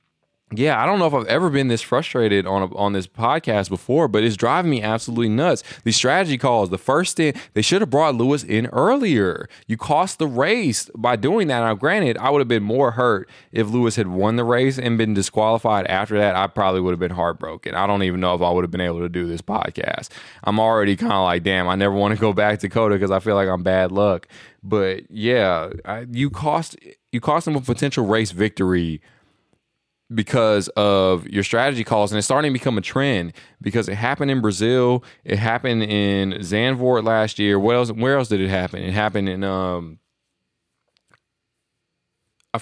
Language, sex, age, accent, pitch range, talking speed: English, male, 20-39, American, 95-120 Hz, 210 wpm